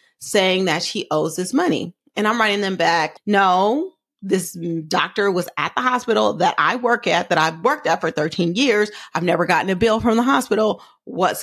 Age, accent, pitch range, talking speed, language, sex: 30-49, American, 170-215 Hz, 200 wpm, English, female